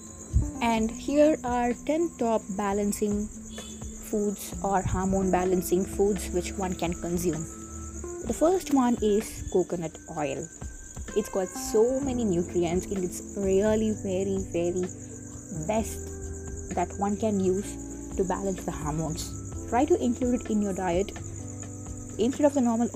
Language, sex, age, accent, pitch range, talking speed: English, female, 20-39, Indian, 150-215 Hz, 135 wpm